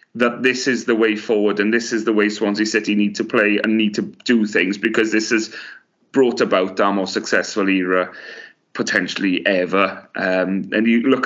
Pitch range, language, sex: 100-115 Hz, English, male